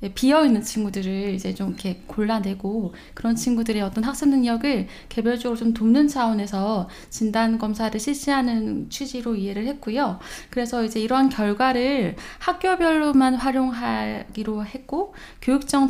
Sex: female